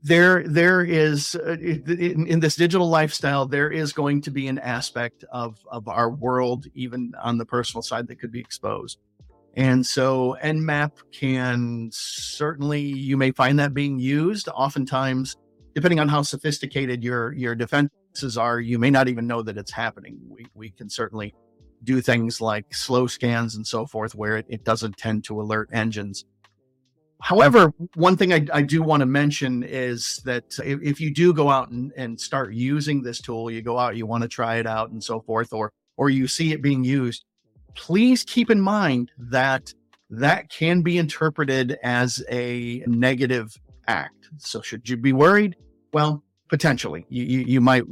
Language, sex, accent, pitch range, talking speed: English, male, American, 120-150 Hz, 175 wpm